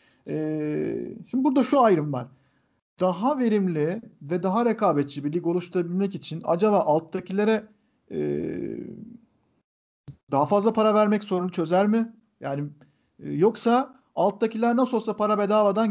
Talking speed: 115 wpm